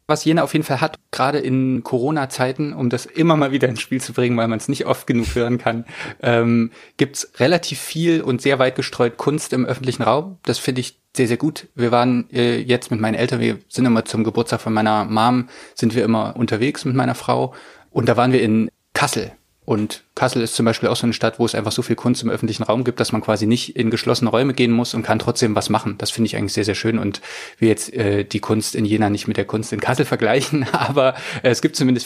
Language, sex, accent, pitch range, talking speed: German, male, German, 115-130 Hz, 245 wpm